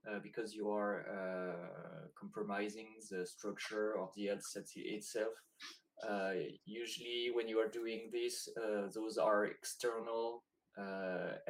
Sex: male